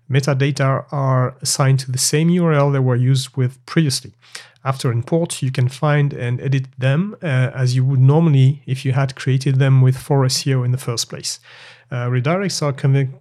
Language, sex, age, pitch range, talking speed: English, male, 40-59, 125-145 Hz, 180 wpm